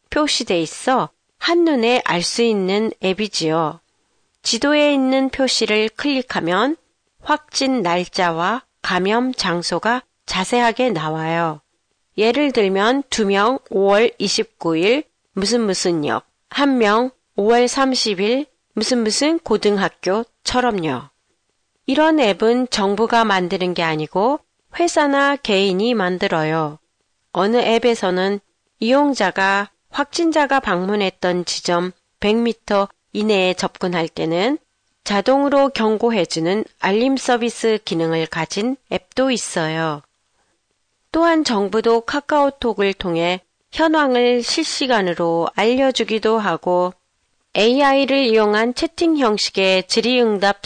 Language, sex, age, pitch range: Japanese, female, 40-59, 185-255 Hz